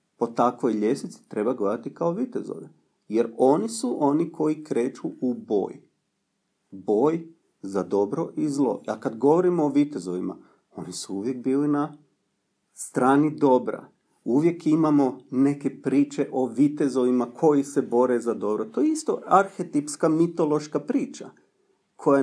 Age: 40-59